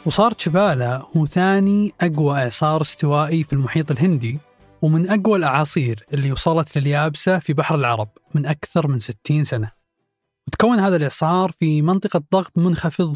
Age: 20-39